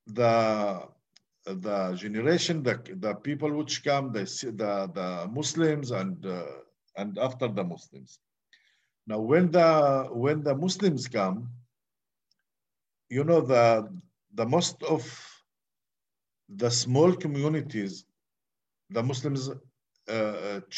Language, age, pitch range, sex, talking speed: English, 50-69, 115-155 Hz, male, 105 wpm